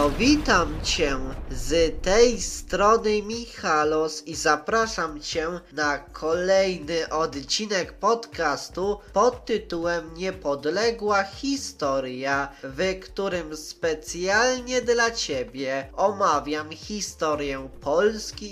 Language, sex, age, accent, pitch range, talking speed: Polish, male, 20-39, native, 140-190 Hz, 85 wpm